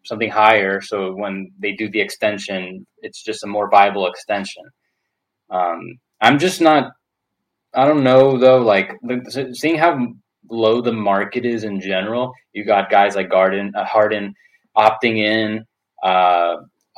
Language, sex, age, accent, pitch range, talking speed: English, male, 20-39, American, 100-125 Hz, 140 wpm